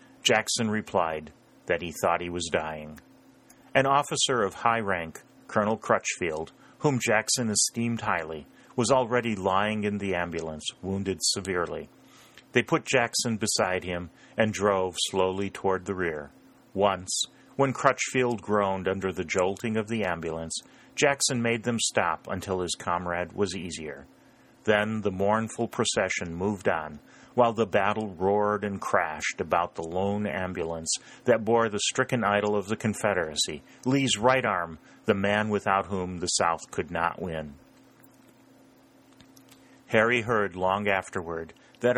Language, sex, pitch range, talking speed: English, male, 95-115 Hz, 140 wpm